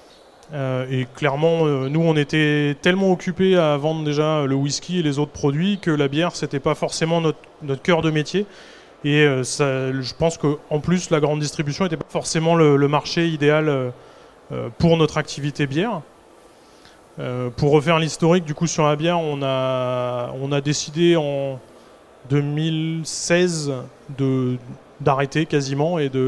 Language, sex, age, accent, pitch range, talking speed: French, male, 20-39, French, 145-175 Hz, 155 wpm